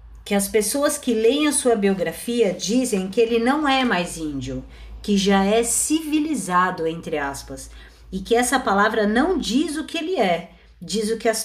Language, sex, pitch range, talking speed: Portuguese, female, 190-260 Hz, 185 wpm